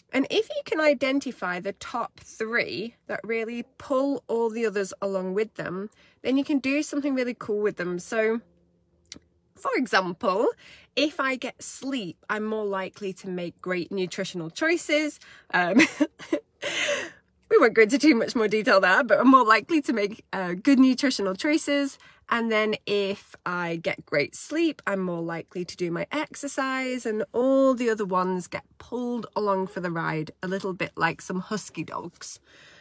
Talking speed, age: 170 wpm, 20-39